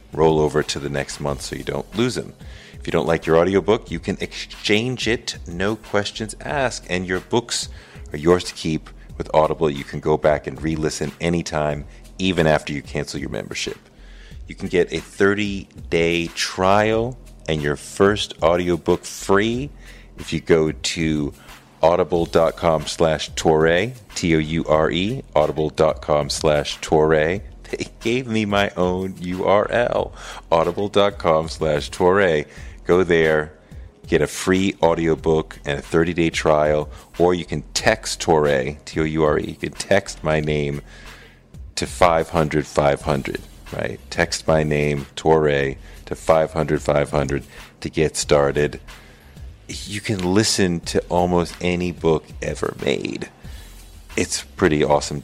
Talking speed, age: 135 wpm, 30-49